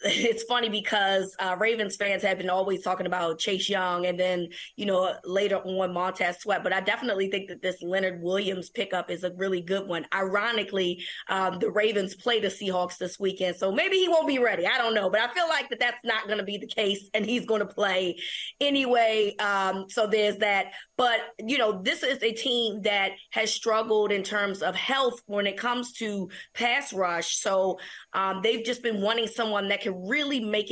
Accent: American